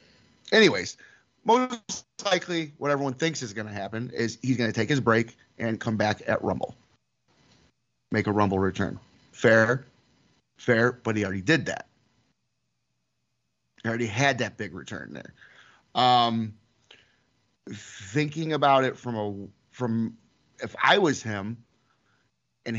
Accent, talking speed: American, 135 wpm